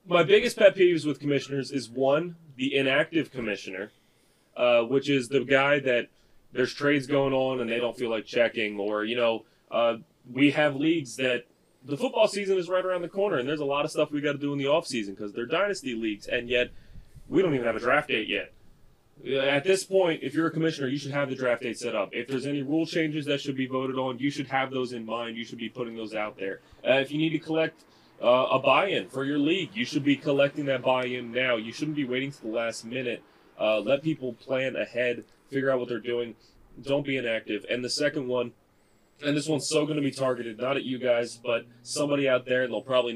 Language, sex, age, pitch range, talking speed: English, male, 20-39, 120-145 Hz, 240 wpm